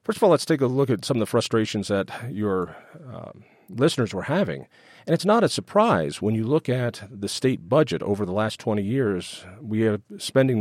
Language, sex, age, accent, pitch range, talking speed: English, male, 40-59, American, 110-150 Hz, 215 wpm